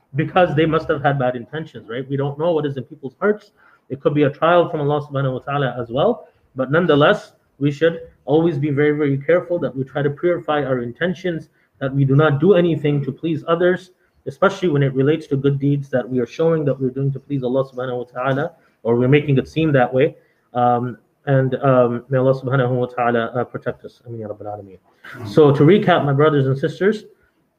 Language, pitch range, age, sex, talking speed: English, 130-155 Hz, 30-49, male, 210 wpm